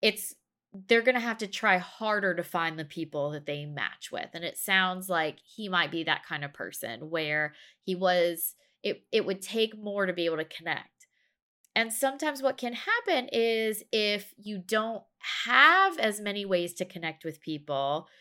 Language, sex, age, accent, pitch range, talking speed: English, female, 20-39, American, 170-220 Hz, 190 wpm